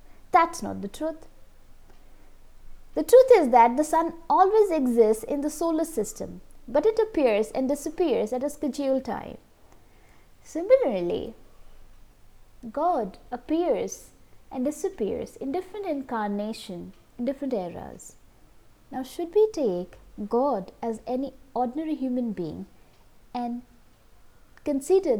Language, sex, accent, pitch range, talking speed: English, female, Indian, 225-315 Hz, 115 wpm